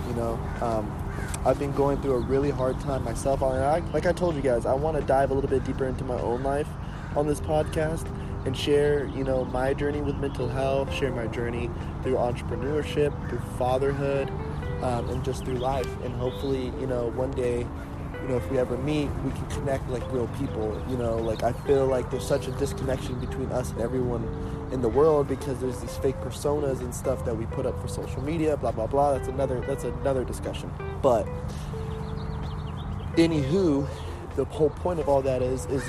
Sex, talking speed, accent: male, 200 wpm, American